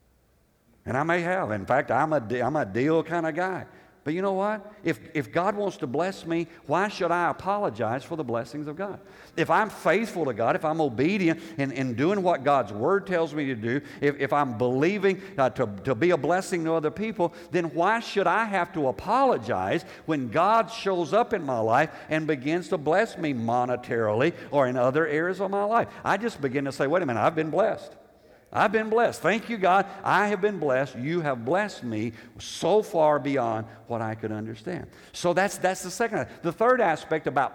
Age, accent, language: 50-69, American, English